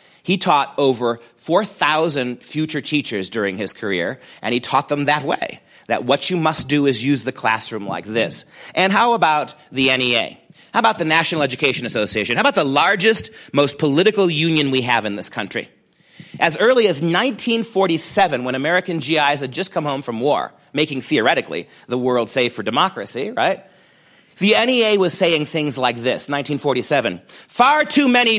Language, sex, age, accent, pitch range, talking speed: English, male, 40-59, American, 140-200 Hz, 170 wpm